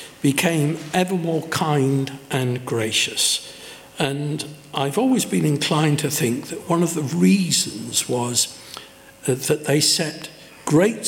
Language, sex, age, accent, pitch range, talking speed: English, male, 60-79, British, 135-185 Hz, 125 wpm